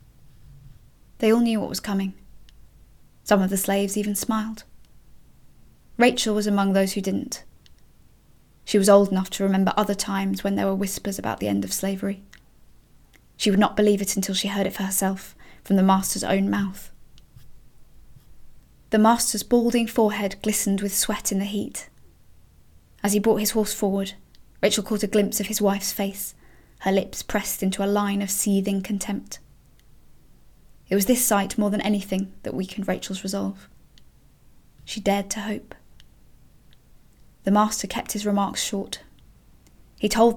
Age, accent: 20-39, British